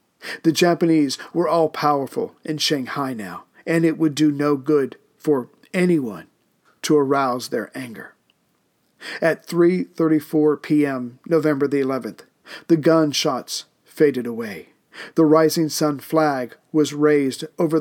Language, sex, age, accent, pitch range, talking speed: English, male, 50-69, American, 140-160 Hz, 130 wpm